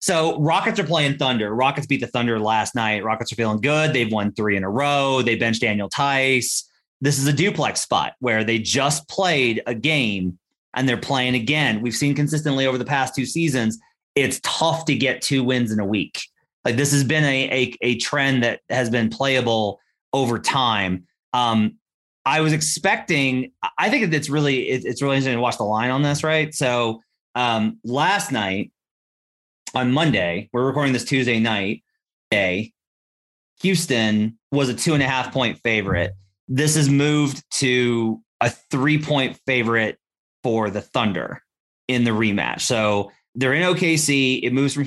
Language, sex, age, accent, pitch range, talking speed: English, male, 30-49, American, 115-145 Hz, 175 wpm